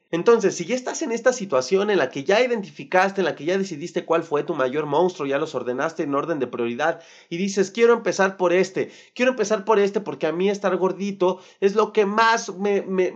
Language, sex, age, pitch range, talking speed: Spanish, male, 30-49, 170-215 Hz, 225 wpm